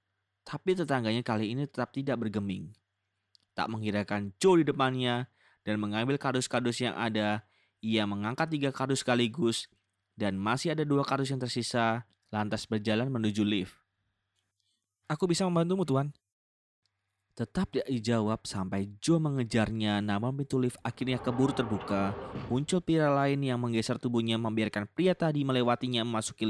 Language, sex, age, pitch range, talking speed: Indonesian, male, 20-39, 100-130 Hz, 135 wpm